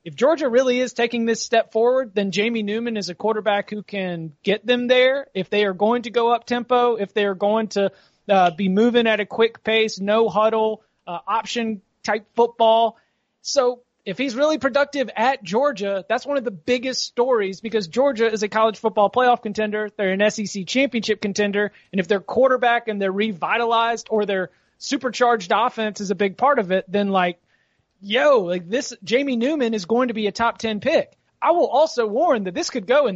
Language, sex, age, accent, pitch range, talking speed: English, male, 30-49, American, 195-245 Hz, 205 wpm